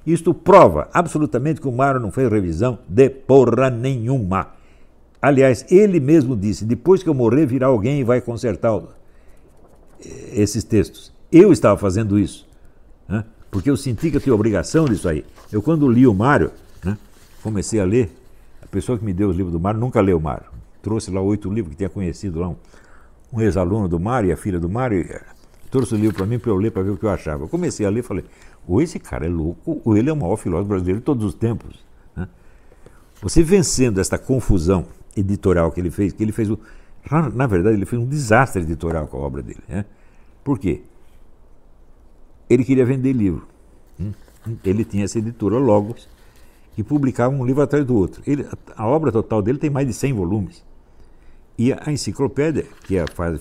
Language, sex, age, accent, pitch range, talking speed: Portuguese, male, 60-79, Brazilian, 95-130 Hz, 200 wpm